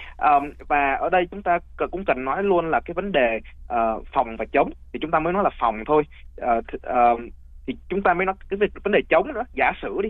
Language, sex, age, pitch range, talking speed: Vietnamese, male, 20-39, 115-180 Hz, 255 wpm